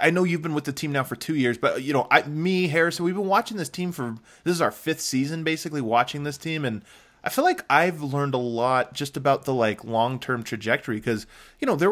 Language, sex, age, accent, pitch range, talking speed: English, male, 20-39, American, 115-150 Hz, 250 wpm